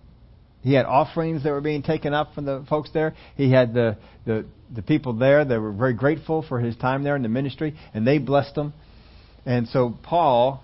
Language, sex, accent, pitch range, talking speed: English, male, American, 110-145 Hz, 210 wpm